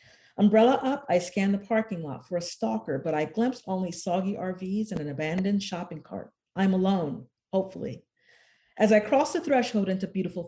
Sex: female